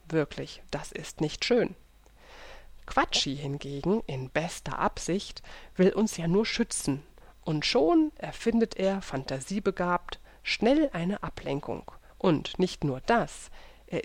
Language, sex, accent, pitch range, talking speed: German, female, German, 150-210 Hz, 120 wpm